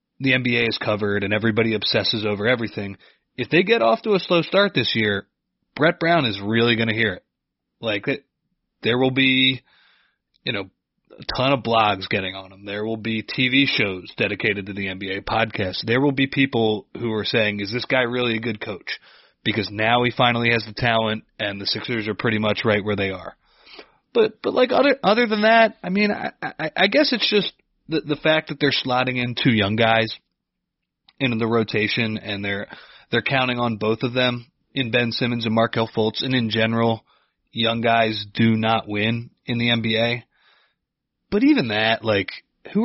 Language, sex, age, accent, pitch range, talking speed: English, male, 30-49, American, 110-135 Hz, 195 wpm